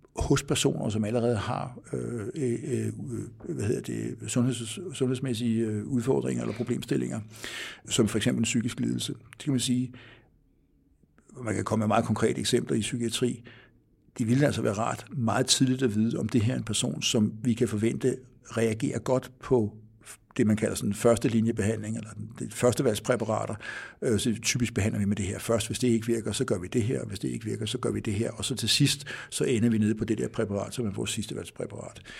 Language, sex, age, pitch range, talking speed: Danish, male, 60-79, 110-125 Hz, 200 wpm